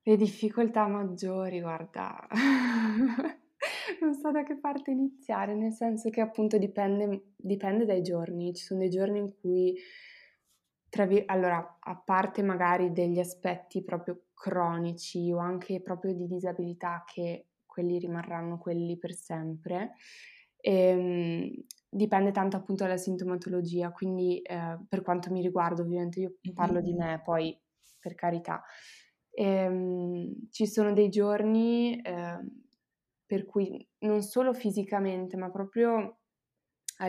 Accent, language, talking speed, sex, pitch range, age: native, Italian, 130 wpm, female, 175-210 Hz, 20-39